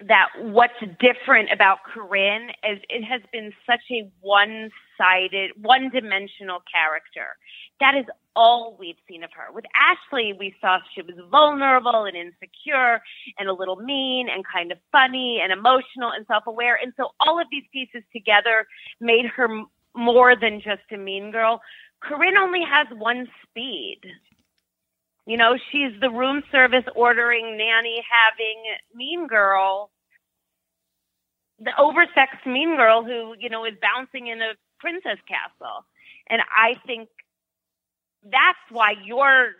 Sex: female